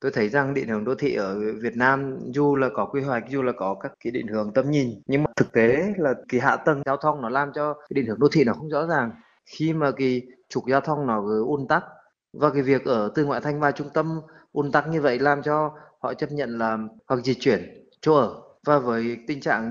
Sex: male